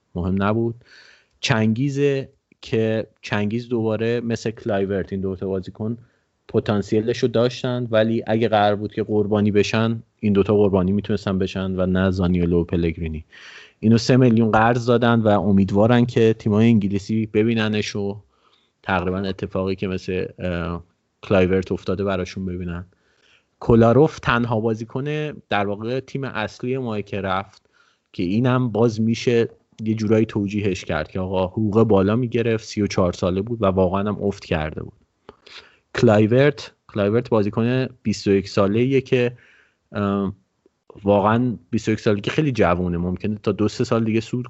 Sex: male